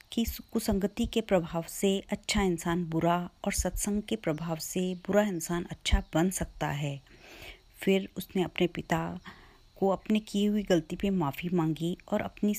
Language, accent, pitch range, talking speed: Hindi, native, 165-215 Hz, 155 wpm